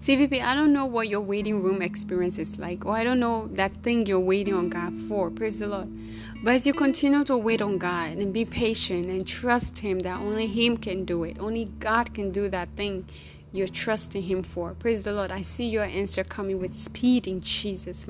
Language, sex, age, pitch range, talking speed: English, female, 20-39, 180-215 Hz, 220 wpm